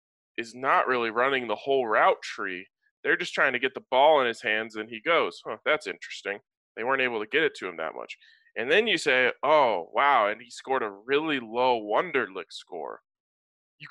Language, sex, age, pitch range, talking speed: English, male, 20-39, 125-165 Hz, 210 wpm